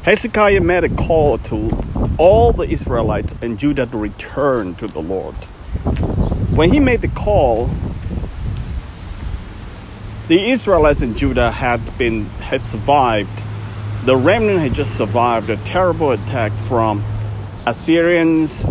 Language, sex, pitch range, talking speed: English, male, 100-145 Hz, 120 wpm